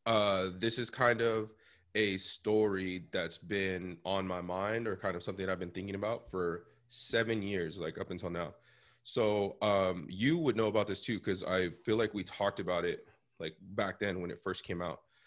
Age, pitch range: 20-39, 90-100 Hz